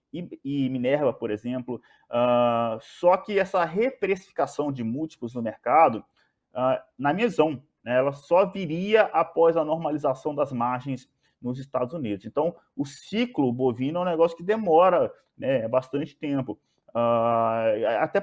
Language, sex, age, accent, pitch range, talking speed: Portuguese, male, 20-39, Brazilian, 120-165 Hz, 130 wpm